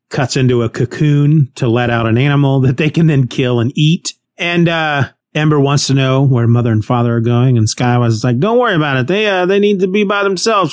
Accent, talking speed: American, 245 wpm